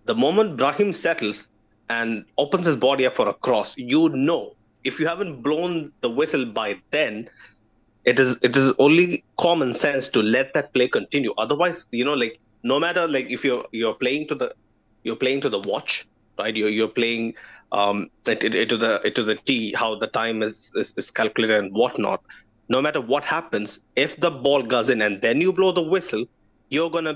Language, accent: English, Indian